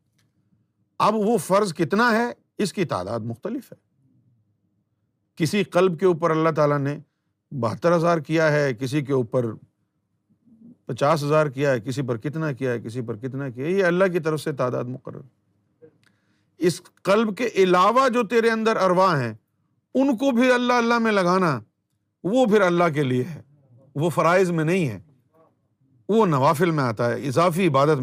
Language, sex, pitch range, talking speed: Urdu, male, 130-205 Hz, 170 wpm